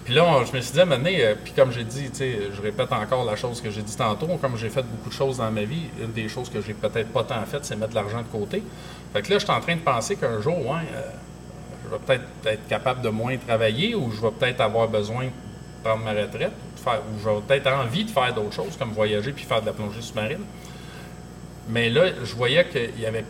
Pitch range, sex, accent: 105-135 Hz, male, Canadian